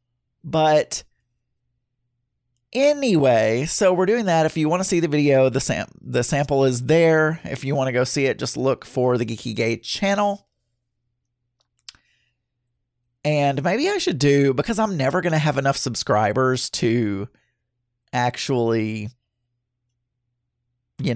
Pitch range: 120-155 Hz